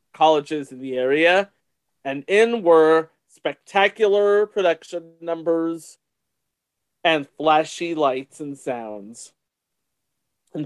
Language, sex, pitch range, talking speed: English, male, 150-205 Hz, 90 wpm